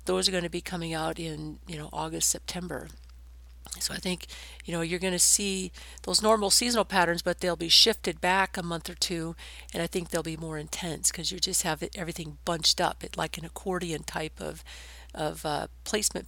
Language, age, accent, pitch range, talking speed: English, 50-69, American, 160-190 Hz, 210 wpm